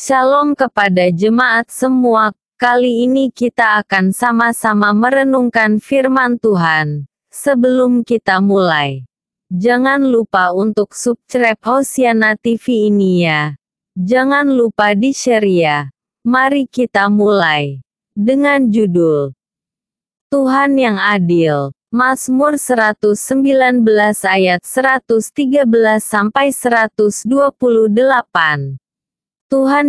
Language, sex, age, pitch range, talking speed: Indonesian, female, 20-39, 200-255 Hz, 80 wpm